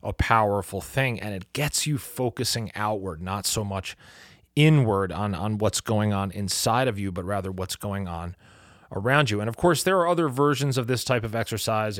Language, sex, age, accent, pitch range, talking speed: English, male, 30-49, American, 95-125 Hz, 200 wpm